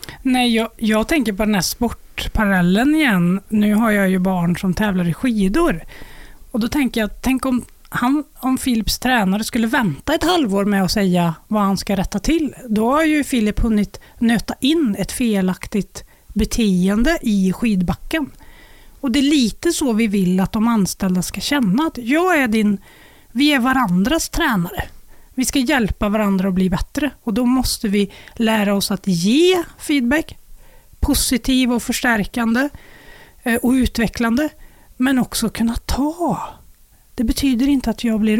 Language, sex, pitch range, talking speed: Swedish, female, 205-260 Hz, 160 wpm